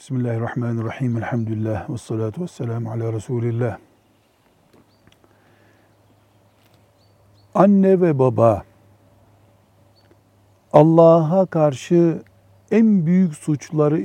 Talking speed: 60 wpm